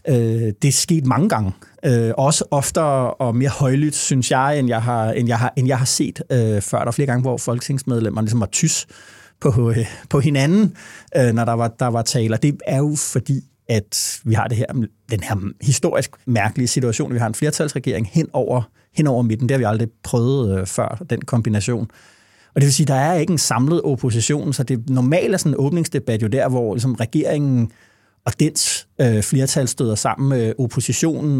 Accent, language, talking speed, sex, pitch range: native, Danish, 195 wpm, male, 115-145 Hz